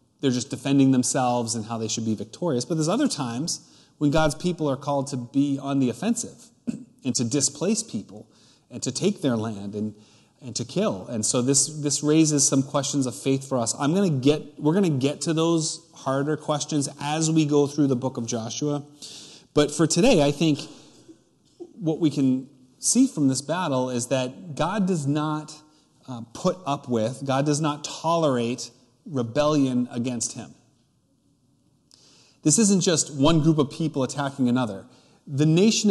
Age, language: 30-49, English